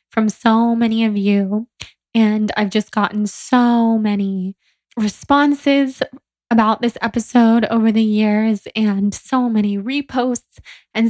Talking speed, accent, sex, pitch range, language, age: 125 wpm, American, female, 210-240 Hz, English, 10-29